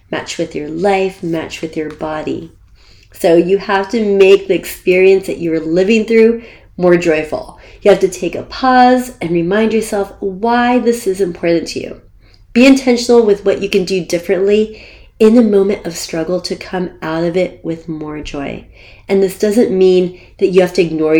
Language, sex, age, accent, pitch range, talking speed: English, female, 30-49, American, 155-195 Hz, 185 wpm